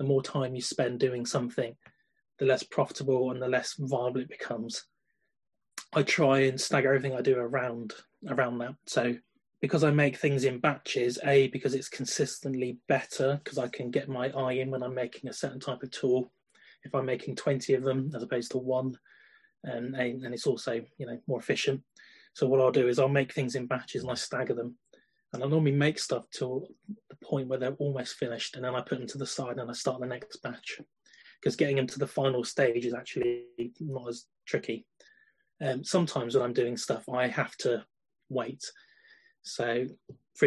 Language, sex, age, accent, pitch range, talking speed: English, male, 30-49, British, 125-140 Hz, 200 wpm